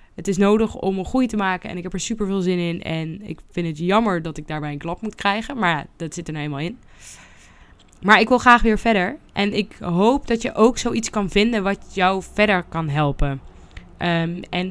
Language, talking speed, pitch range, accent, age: Dutch, 235 wpm, 175-220 Hz, Dutch, 20-39